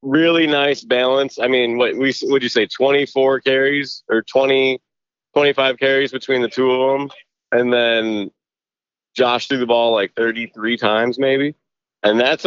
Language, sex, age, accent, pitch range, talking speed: English, male, 30-49, American, 120-150 Hz, 160 wpm